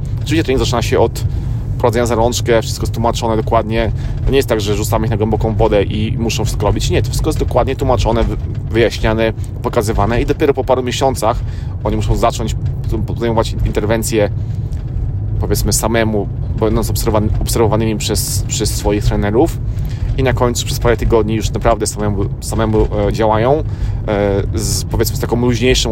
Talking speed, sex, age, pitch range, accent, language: 155 wpm, male, 30-49, 105-120 Hz, native, Polish